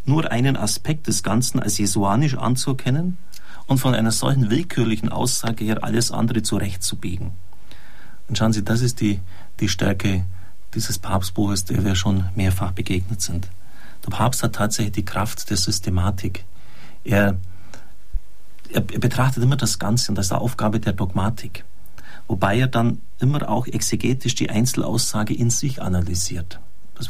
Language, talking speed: German, 150 wpm